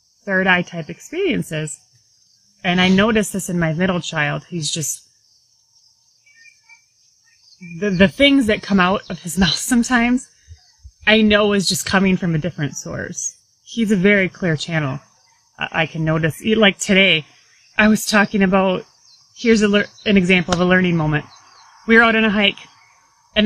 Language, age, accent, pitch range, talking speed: English, 30-49, American, 125-195 Hz, 155 wpm